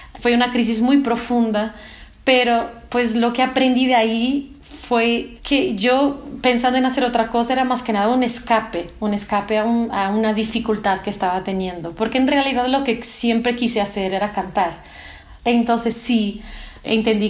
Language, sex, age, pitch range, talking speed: Spanish, female, 30-49, 205-245 Hz, 170 wpm